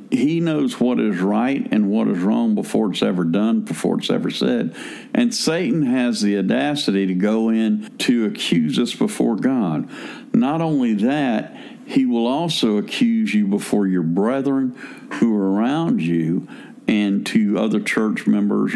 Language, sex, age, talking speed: English, male, 50-69, 160 wpm